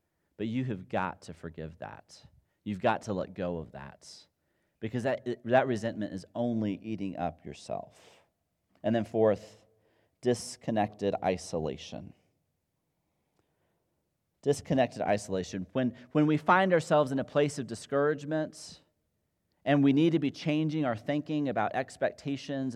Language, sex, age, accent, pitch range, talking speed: English, male, 40-59, American, 100-145 Hz, 130 wpm